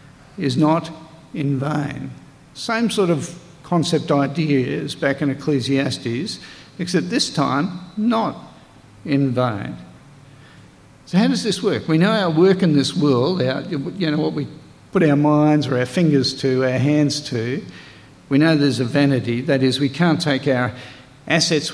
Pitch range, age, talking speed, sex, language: 140-175 Hz, 50-69, 155 wpm, male, English